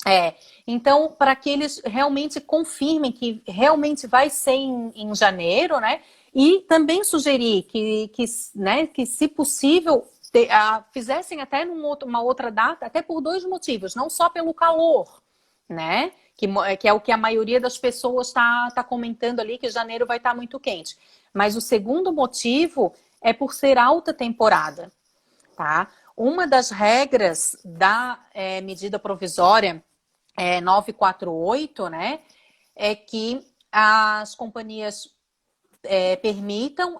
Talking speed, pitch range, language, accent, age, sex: 145 wpm, 210-285 Hz, Portuguese, Brazilian, 30-49, female